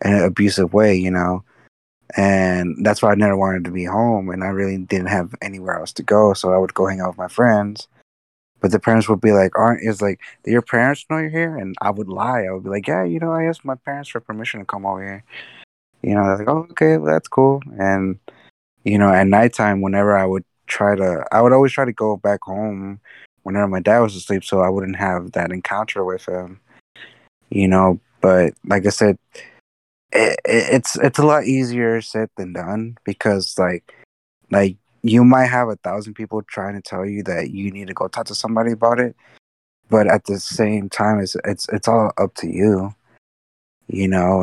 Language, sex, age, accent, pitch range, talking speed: English, male, 20-39, American, 95-110 Hz, 215 wpm